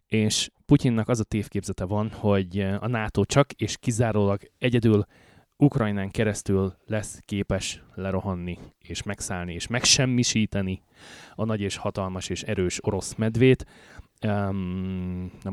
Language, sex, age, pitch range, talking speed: Hungarian, male, 30-49, 95-115 Hz, 120 wpm